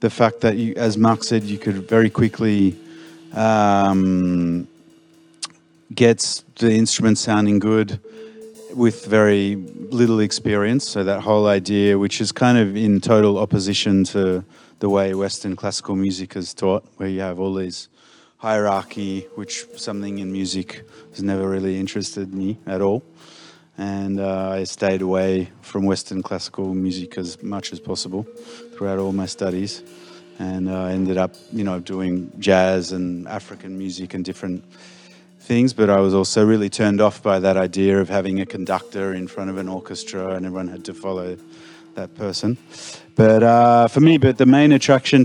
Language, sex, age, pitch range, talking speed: Slovak, male, 30-49, 95-115 Hz, 165 wpm